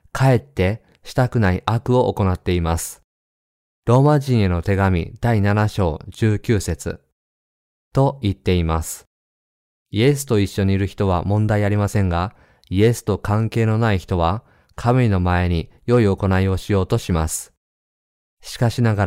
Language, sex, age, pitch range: Japanese, male, 20-39, 90-120 Hz